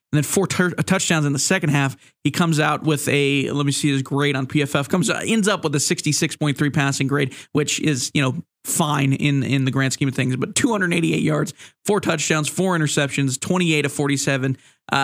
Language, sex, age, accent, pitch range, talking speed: English, male, 20-39, American, 140-160 Hz, 200 wpm